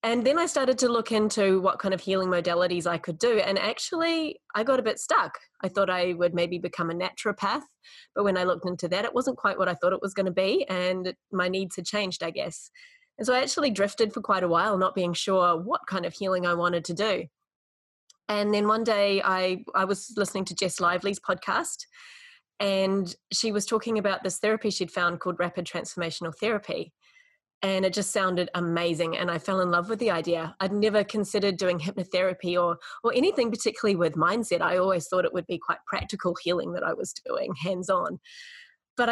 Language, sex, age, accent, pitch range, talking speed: English, female, 20-39, Australian, 180-215 Hz, 215 wpm